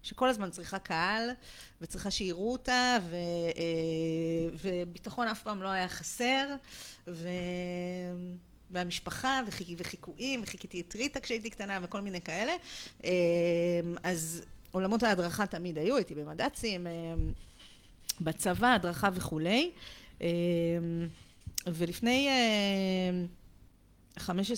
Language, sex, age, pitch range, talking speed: Hebrew, female, 40-59, 170-235 Hz, 95 wpm